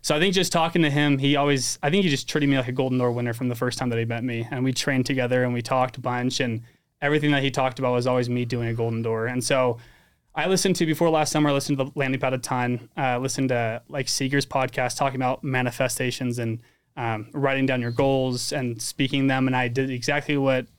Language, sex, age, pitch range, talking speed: English, male, 20-39, 125-140 Hz, 255 wpm